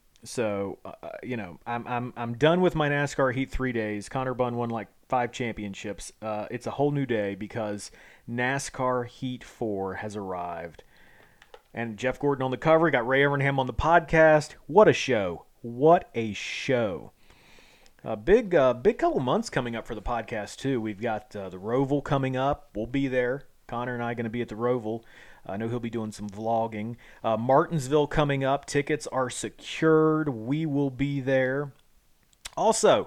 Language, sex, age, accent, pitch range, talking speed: English, male, 30-49, American, 110-140 Hz, 180 wpm